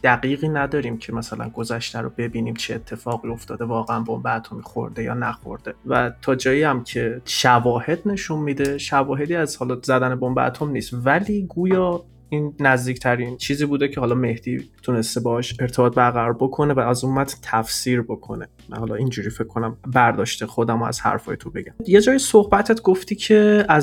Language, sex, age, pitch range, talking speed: Persian, male, 20-39, 120-150 Hz, 160 wpm